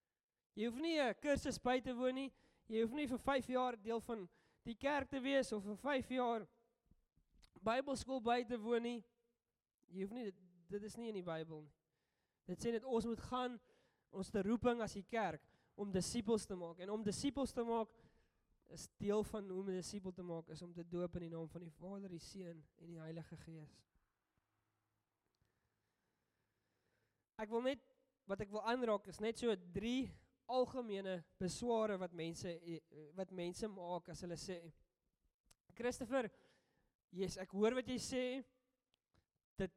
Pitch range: 185-245 Hz